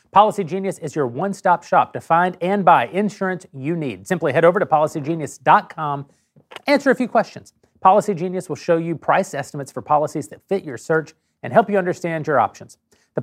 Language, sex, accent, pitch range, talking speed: English, male, American, 145-185 Hz, 195 wpm